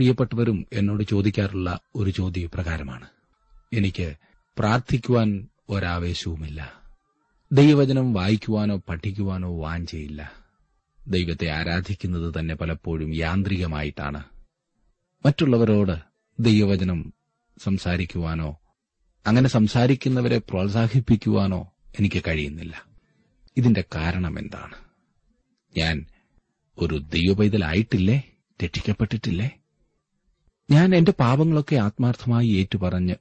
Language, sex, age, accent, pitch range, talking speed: Malayalam, male, 30-49, native, 80-105 Hz, 70 wpm